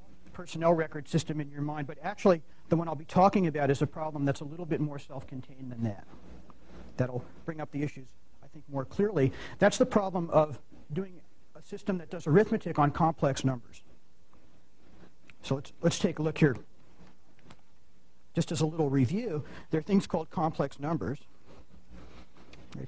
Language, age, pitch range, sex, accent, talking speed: English, 50-69, 100-160 Hz, male, American, 175 wpm